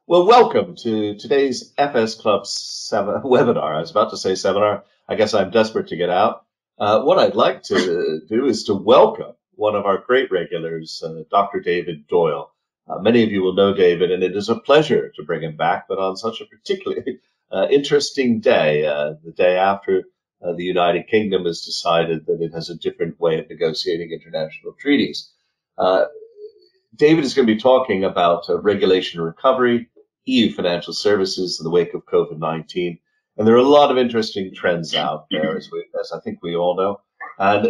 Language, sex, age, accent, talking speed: English, male, 50-69, American, 190 wpm